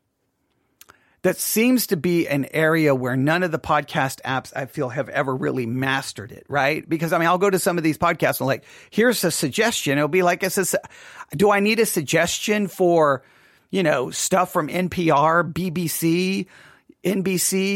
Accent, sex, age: American, male, 40-59